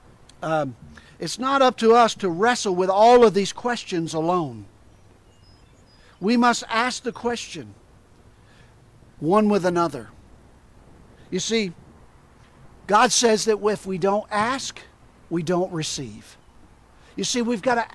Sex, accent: male, American